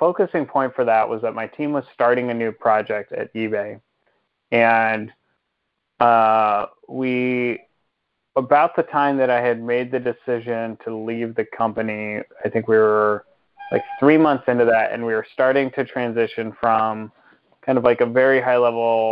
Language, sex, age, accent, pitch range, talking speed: English, male, 30-49, American, 115-130 Hz, 165 wpm